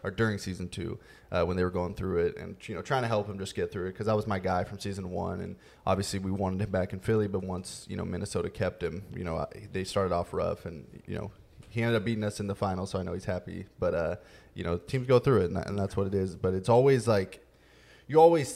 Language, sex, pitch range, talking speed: English, male, 95-115 Hz, 285 wpm